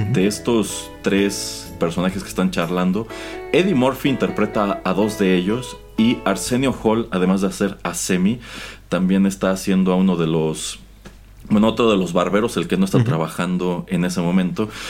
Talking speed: 170 wpm